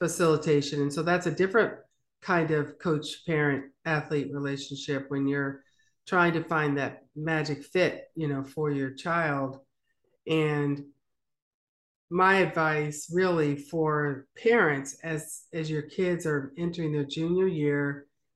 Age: 50-69